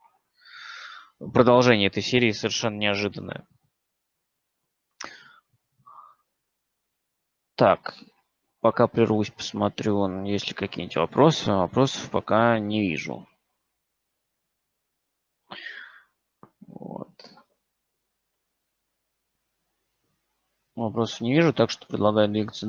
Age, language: 20-39, Russian